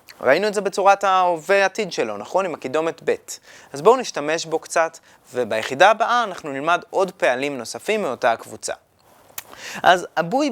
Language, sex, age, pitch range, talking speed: Hebrew, male, 20-39, 140-200 Hz, 155 wpm